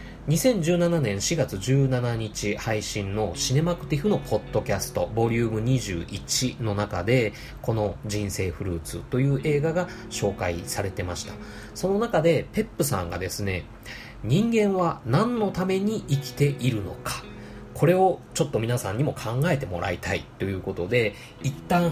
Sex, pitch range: male, 105-165 Hz